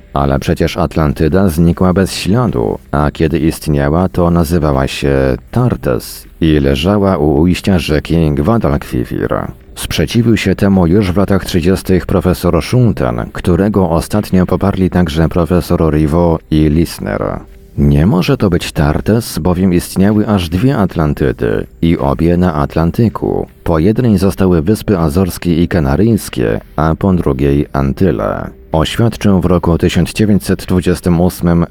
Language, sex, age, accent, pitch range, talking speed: Polish, male, 40-59, native, 80-95 Hz, 125 wpm